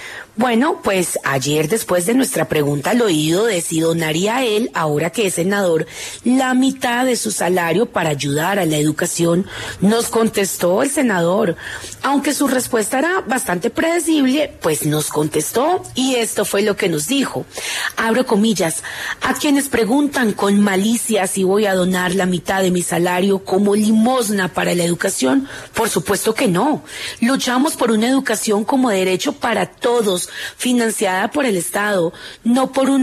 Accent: Colombian